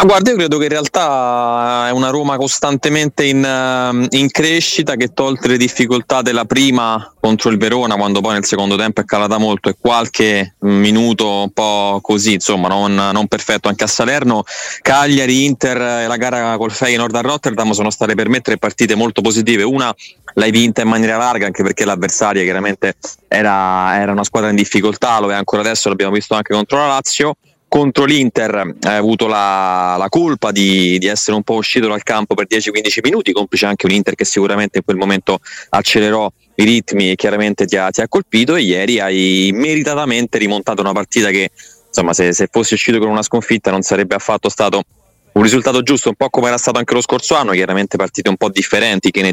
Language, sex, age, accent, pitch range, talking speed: Italian, male, 20-39, native, 100-125 Hz, 200 wpm